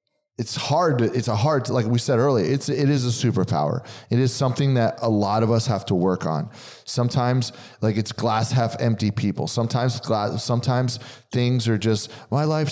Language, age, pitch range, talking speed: English, 30-49, 100-130 Hz, 205 wpm